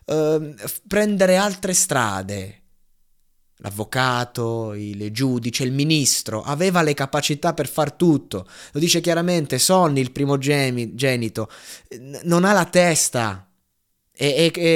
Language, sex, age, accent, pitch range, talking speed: Italian, male, 20-39, native, 105-140 Hz, 105 wpm